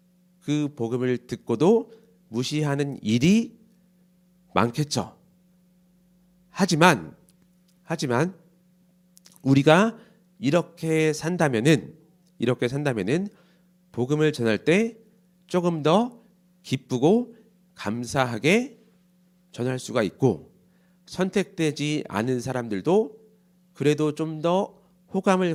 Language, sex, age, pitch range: Korean, male, 40-59, 125-180 Hz